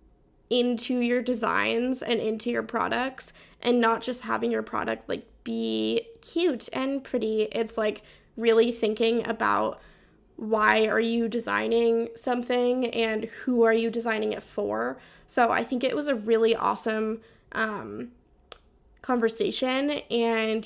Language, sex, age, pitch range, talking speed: English, female, 10-29, 225-260 Hz, 135 wpm